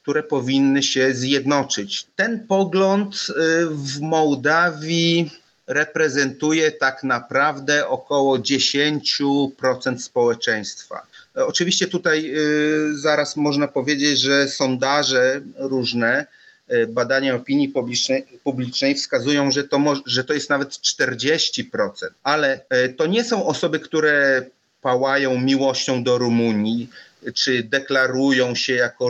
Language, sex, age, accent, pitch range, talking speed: Polish, male, 40-59, native, 130-155 Hz, 95 wpm